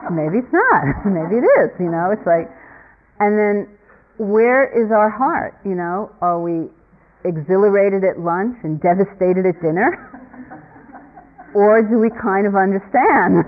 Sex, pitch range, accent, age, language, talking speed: female, 165-210 Hz, American, 40-59, English, 145 wpm